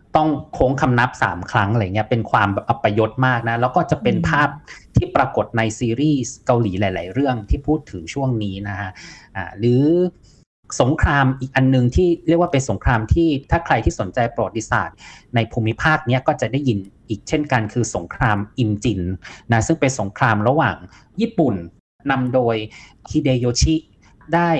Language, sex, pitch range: Thai, male, 105-135 Hz